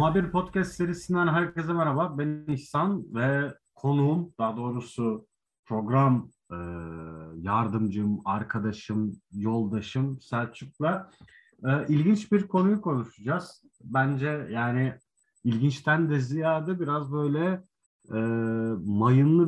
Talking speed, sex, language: 85 wpm, male, Turkish